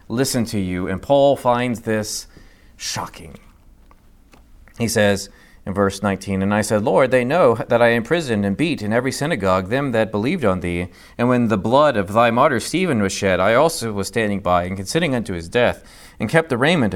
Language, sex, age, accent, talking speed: English, male, 40-59, American, 200 wpm